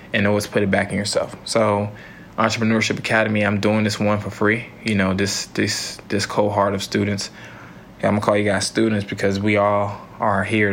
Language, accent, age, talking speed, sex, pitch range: English, American, 20-39, 195 wpm, male, 100-110 Hz